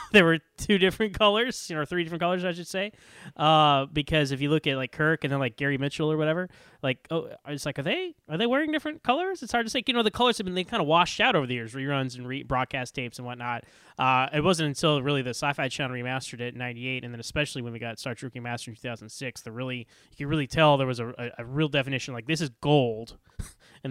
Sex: male